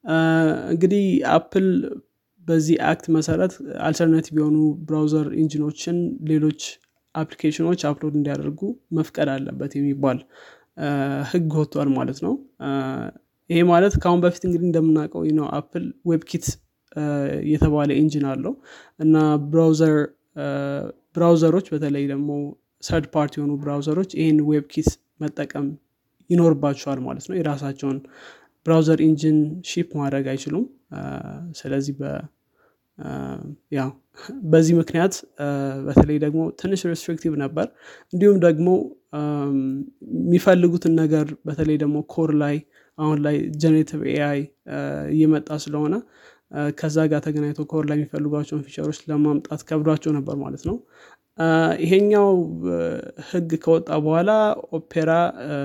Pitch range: 145-165 Hz